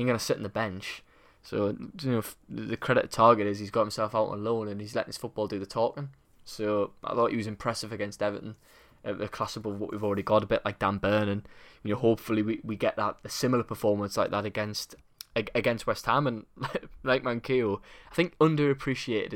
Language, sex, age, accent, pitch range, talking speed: English, male, 10-29, British, 100-125 Hz, 220 wpm